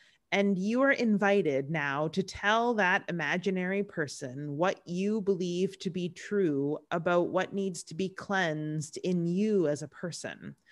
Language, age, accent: English, 30-49, American